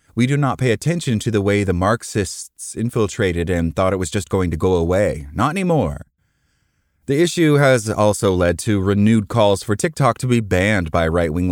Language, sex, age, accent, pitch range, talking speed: English, male, 30-49, American, 90-130 Hz, 195 wpm